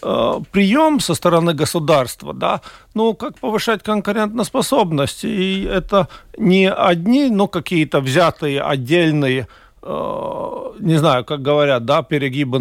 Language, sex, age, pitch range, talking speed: Russian, male, 50-69, 160-210 Hz, 120 wpm